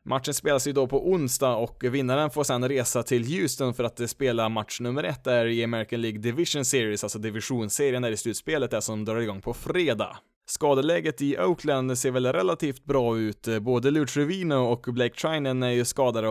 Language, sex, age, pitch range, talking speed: Swedish, male, 20-39, 115-140 Hz, 190 wpm